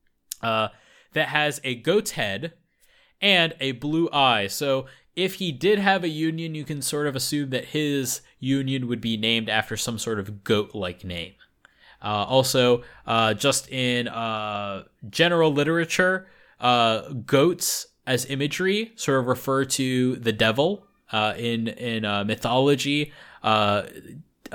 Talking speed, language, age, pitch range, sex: 145 wpm, English, 20-39, 115-150 Hz, male